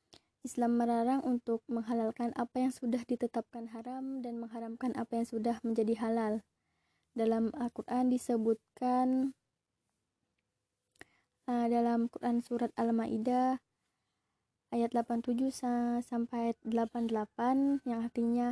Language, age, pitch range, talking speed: Indonesian, 20-39, 235-250 Hz, 95 wpm